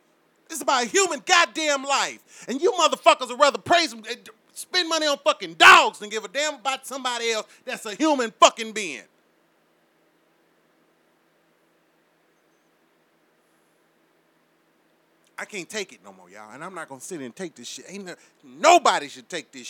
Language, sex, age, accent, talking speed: English, male, 30-49, American, 170 wpm